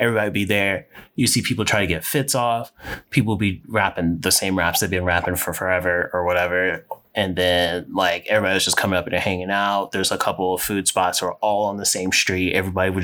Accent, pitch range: American, 90-105 Hz